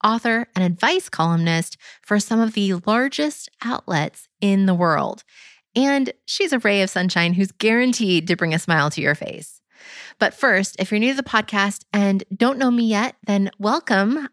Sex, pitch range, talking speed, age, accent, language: female, 175-235 Hz, 180 wpm, 30-49, American, English